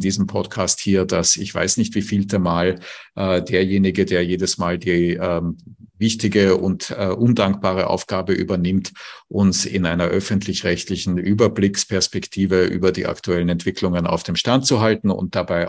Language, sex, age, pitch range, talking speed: English, male, 50-69, 90-100 Hz, 150 wpm